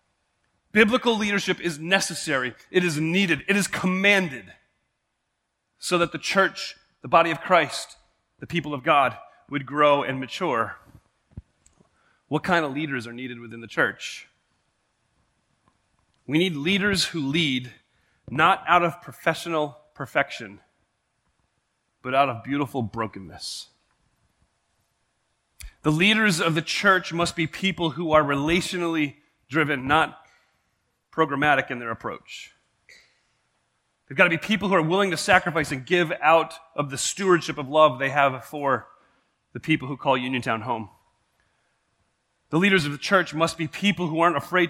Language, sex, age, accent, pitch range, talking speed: English, male, 30-49, American, 130-170 Hz, 140 wpm